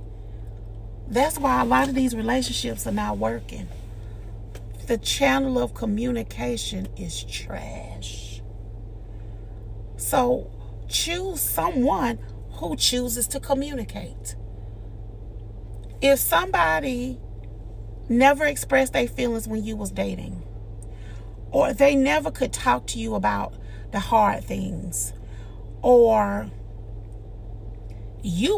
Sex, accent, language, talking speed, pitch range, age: female, American, English, 95 wpm, 105-135 Hz, 40-59